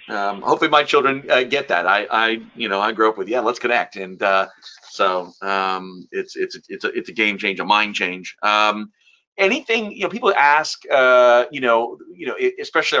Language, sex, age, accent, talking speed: English, male, 40-59, American, 210 wpm